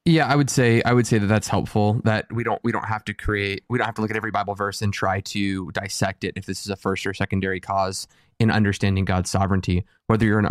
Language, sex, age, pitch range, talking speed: English, male, 20-39, 95-110 Hz, 270 wpm